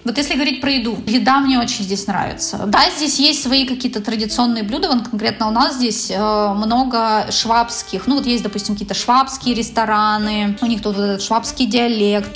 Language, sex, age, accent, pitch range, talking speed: Russian, female, 20-39, native, 210-255 Hz, 180 wpm